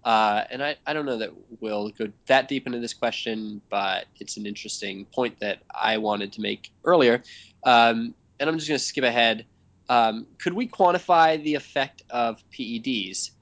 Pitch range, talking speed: 105-140 Hz, 185 wpm